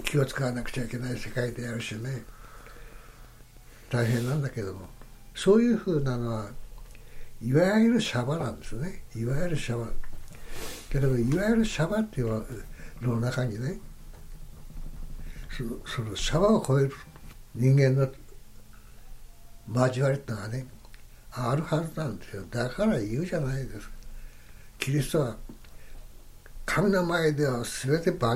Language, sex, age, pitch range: Japanese, male, 60-79, 115-150 Hz